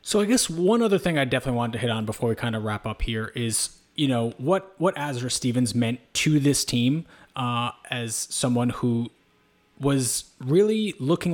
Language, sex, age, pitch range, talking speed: English, male, 20-39, 115-140 Hz, 195 wpm